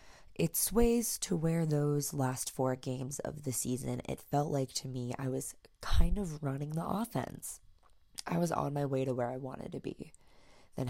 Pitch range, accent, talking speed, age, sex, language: 125-155 Hz, American, 195 wpm, 20-39, female, English